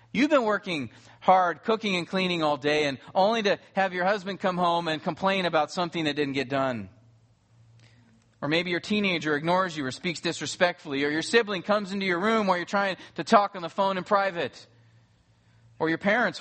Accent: American